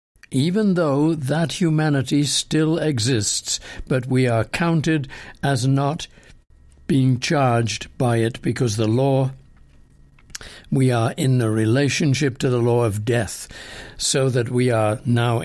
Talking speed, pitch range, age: 130 wpm, 120-155 Hz, 60-79